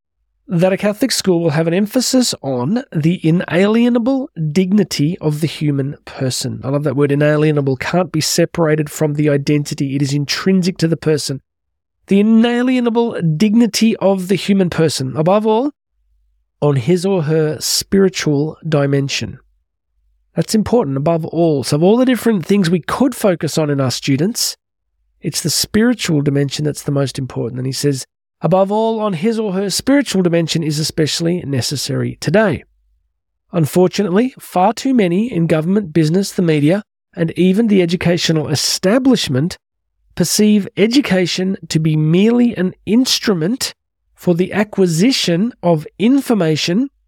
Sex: male